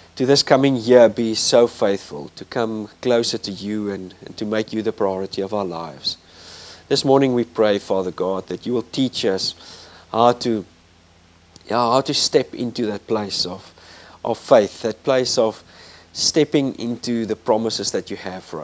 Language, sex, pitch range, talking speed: English, male, 100-135 Hz, 180 wpm